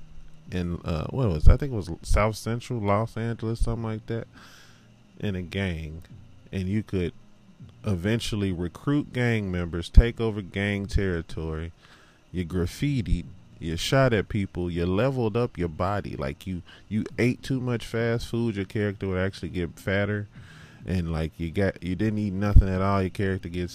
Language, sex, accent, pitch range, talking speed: English, male, American, 90-115 Hz, 170 wpm